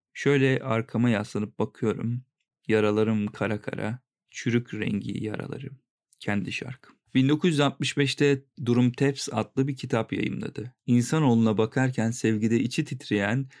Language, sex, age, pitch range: Turkish, male, 40-59, 110-135 Hz